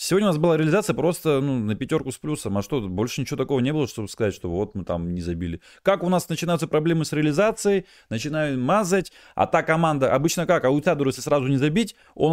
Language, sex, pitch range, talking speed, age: Russian, male, 115-165 Hz, 235 wpm, 30-49